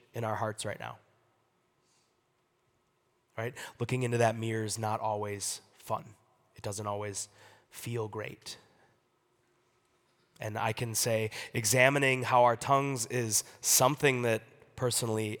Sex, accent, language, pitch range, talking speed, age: male, American, English, 115-155 Hz, 120 wpm, 20-39